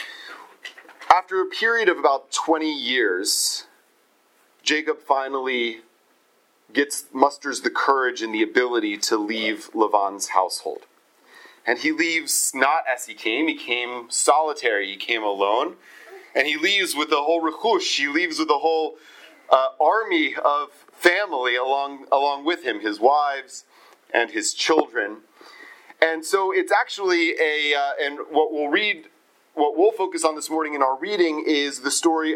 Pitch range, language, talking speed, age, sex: 140-205 Hz, English, 150 wpm, 30-49, male